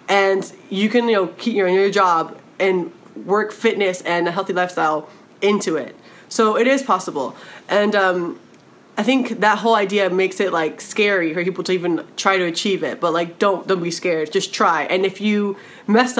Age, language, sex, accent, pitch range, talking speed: 20-39, English, female, American, 170-205 Hz, 195 wpm